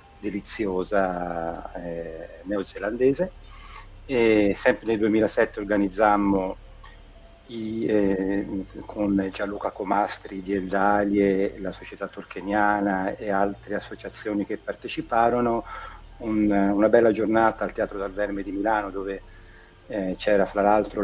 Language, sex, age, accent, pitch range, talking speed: Italian, male, 50-69, native, 95-110 Hz, 100 wpm